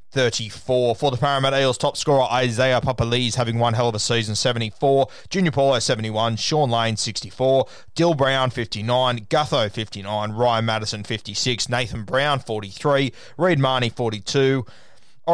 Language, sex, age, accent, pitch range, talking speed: English, male, 20-39, Australian, 110-135 Hz, 140 wpm